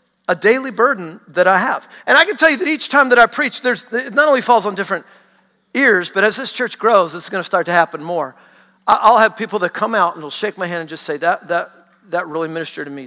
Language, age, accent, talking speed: English, 50-69, American, 260 wpm